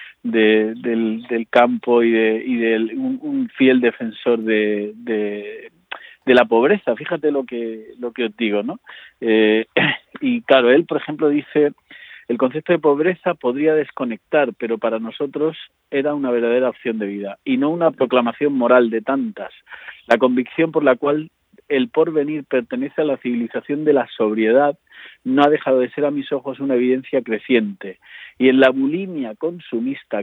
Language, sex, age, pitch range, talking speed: Spanish, male, 40-59, 115-155 Hz, 165 wpm